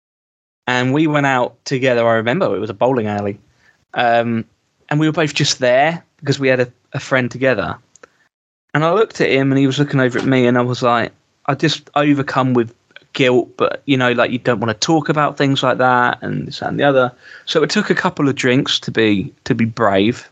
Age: 20-39